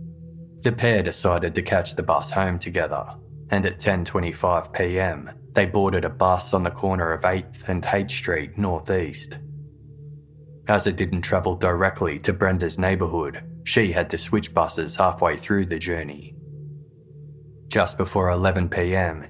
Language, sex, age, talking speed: English, male, 20-39, 140 wpm